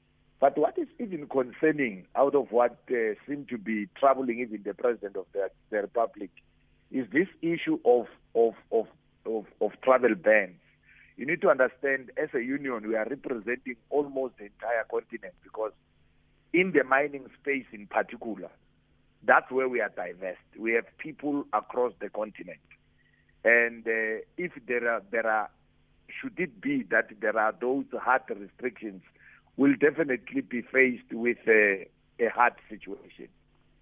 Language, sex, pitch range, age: English, male, 105-145 Hz, 50-69